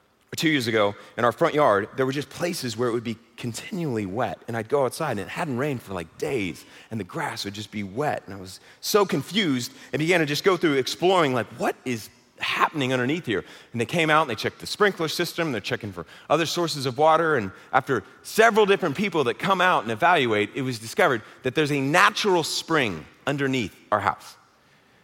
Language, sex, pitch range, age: English, male, 115-155 Hz, 30-49